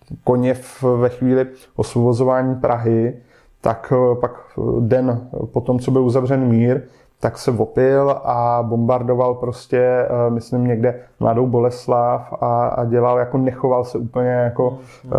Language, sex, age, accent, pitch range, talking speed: Czech, male, 20-39, native, 120-135 Hz, 125 wpm